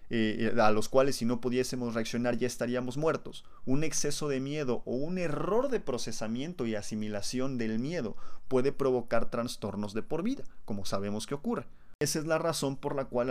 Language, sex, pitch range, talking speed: Spanish, male, 115-140 Hz, 185 wpm